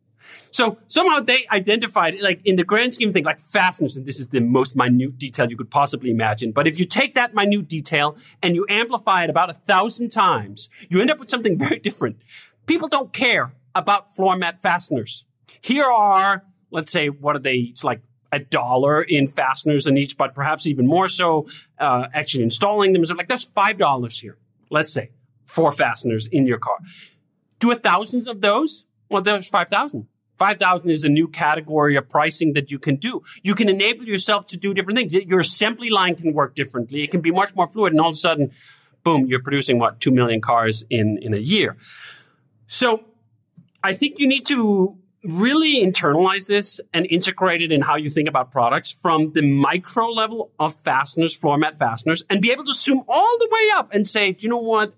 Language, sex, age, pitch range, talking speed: English, male, 40-59, 140-205 Hz, 200 wpm